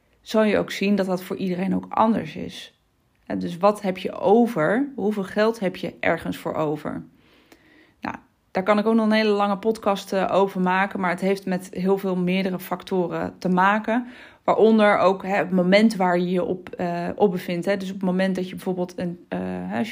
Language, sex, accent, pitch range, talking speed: Dutch, female, Dutch, 180-205 Hz, 185 wpm